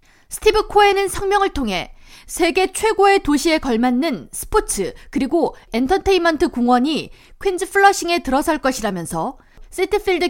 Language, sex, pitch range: Korean, female, 260-365 Hz